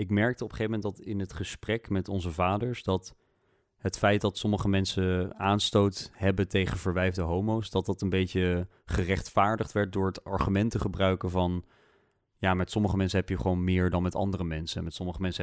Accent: Dutch